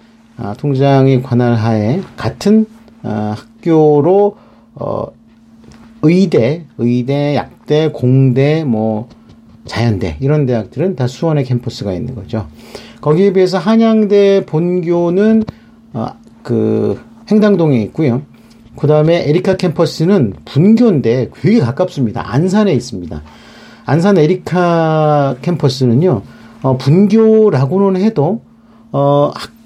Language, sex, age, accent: English, male, 40-59, Korean